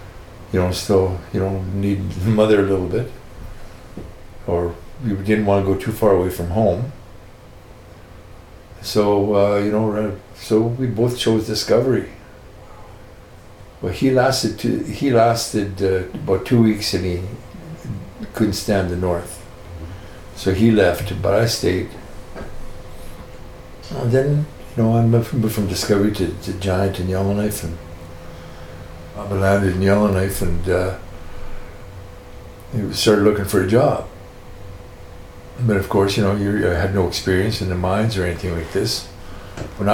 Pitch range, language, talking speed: 95-115 Hz, English, 145 wpm